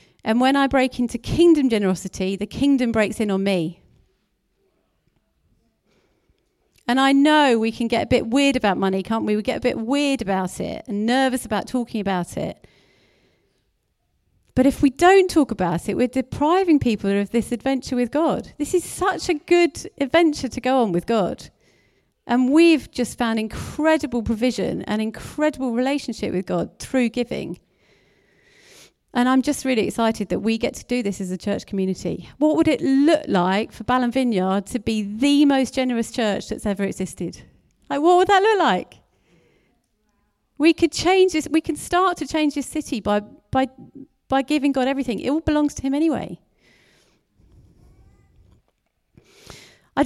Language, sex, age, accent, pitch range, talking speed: English, female, 40-59, British, 220-305 Hz, 170 wpm